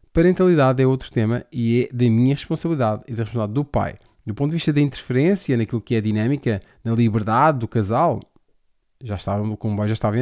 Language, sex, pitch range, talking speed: Portuguese, male, 110-135 Hz, 205 wpm